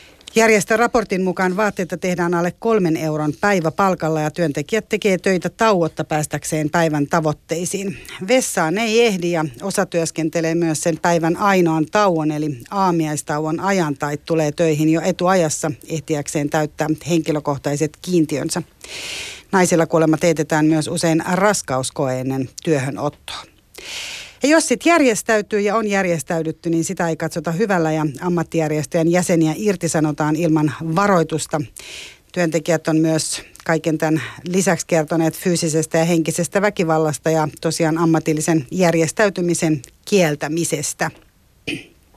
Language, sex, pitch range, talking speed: Finnish, female, 155-190 Hz, 120 wpm